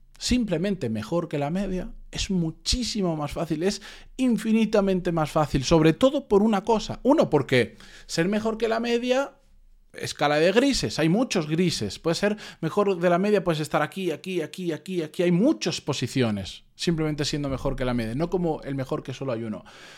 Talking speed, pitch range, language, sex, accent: 185 wpm, 140-205 Hz, Spanish, male, Spanish